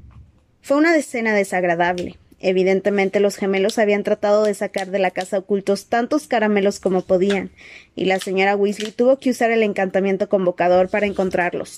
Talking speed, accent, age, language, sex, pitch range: 160 wpm, Mexican, 20-39, Spanish, female, 190-225 Hz